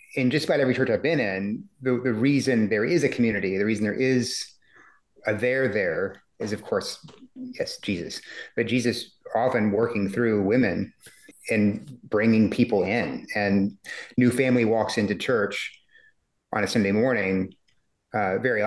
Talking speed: 160 wpm